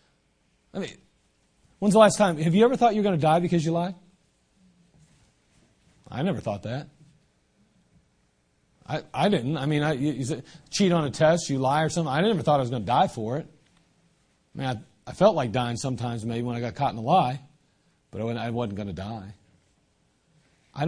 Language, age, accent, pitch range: English, 40-59, American, 120-170 Hz